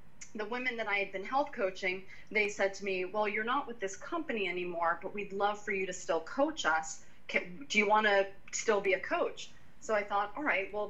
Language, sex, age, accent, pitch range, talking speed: English, female, 30-49, American, 185-240 Hz, 230 wpm